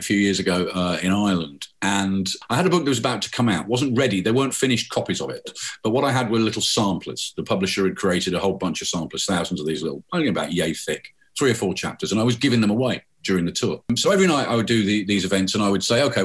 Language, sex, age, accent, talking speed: English, male, 50-69, British, 285 wpm